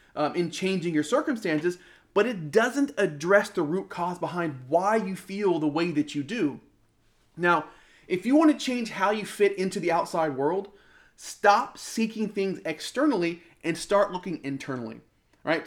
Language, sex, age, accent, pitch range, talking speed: English, male, 30-49, American, 155-205 Hz, 165 wpm